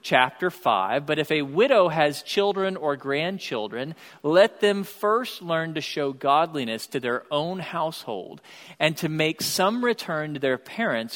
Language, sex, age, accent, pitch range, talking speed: English, male, 40-59, American, 135-170 Hz, 155 wpm